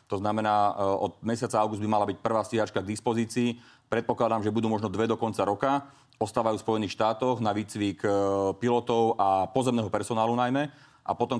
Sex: male